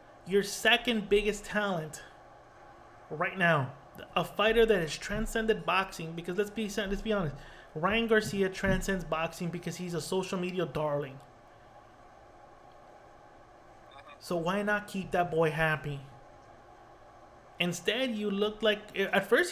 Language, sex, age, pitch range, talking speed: English, male, 20-39, 170-220 Hz, 125 wpm